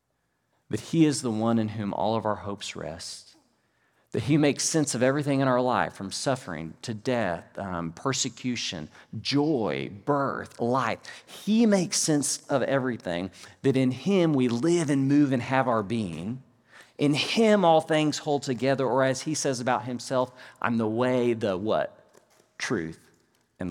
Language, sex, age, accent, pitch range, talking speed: English, male, 40-59, American, 105-140 Hz, 165 wpm